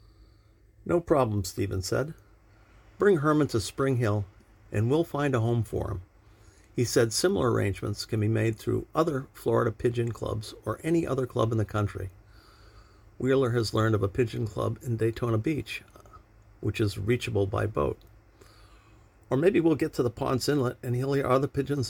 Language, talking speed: English, 175 wpm